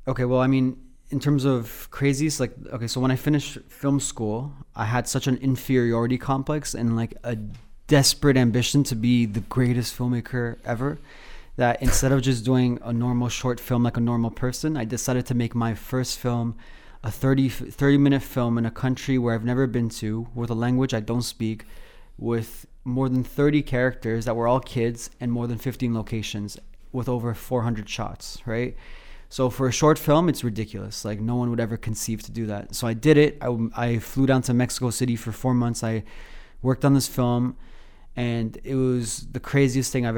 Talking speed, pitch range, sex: 200 wpm, 115-130 Hz, male